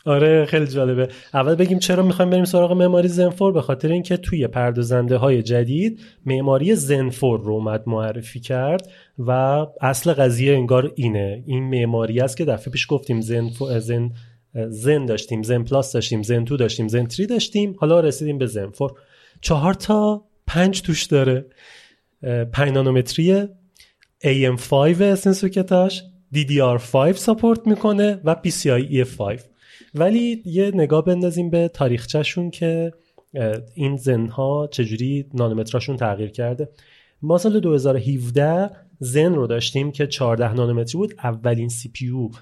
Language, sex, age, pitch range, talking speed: Persian, male, 30-49, 120-175 Hz, 125 wpm